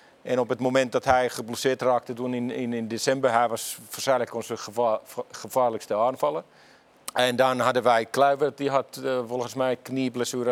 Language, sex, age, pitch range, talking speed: Dutch, male, 50-69, 125-145 Hz, 165 wpm